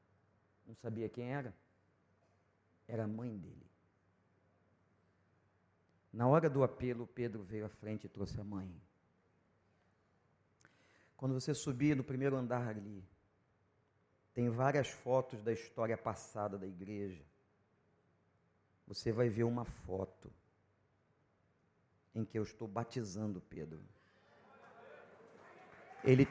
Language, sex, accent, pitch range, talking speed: Portuguese, male, Brazilian, 100-135 Hz, 105 wpm